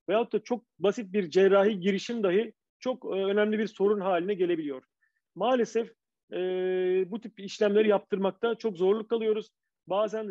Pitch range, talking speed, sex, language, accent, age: 185-220 Hz, 145 wpm, male, Turkish, native, 40-59